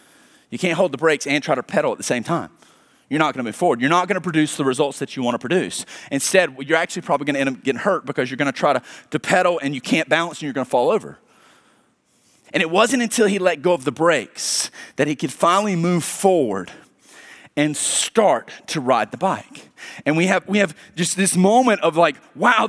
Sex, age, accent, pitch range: male, 30-49, American, 140-230 Hz